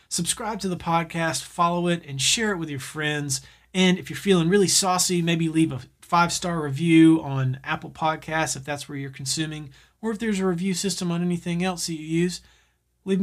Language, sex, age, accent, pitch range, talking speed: English, male, 30-49, American, 140-175 Hz, 200 wpm